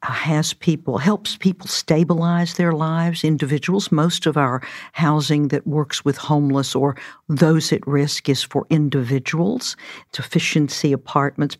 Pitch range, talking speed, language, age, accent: 135-155 Hz, 135 wpm, English, 60-79, American